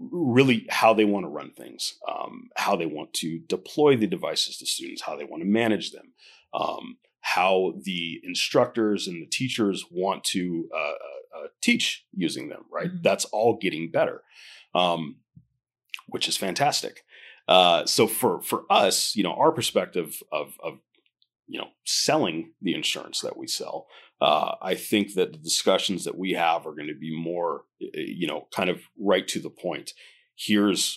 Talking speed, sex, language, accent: 170 wpm, male, English, American